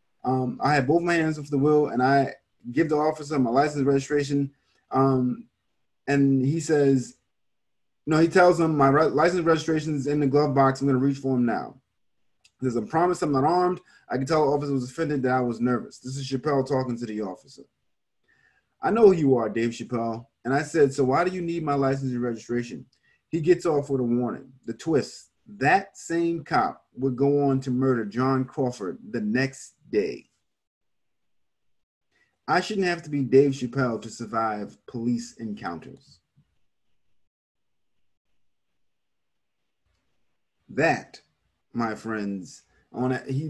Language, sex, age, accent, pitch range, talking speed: English, male, 30-49, American, 120-150 Hz, 175 wpm